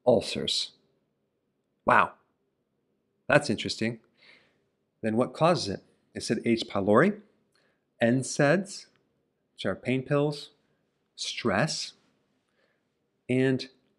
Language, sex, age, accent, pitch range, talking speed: English, male, 40-59, American, 105-130 Hz, 80 wpm